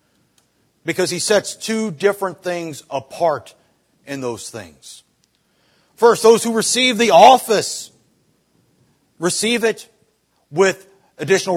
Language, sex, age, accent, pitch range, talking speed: English, male, 40-59, American, 165-225 Hz, 105 wpm